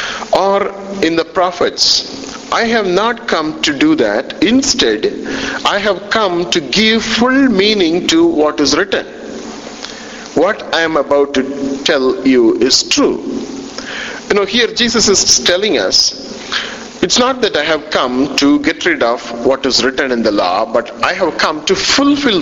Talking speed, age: 165 wpm, 50-69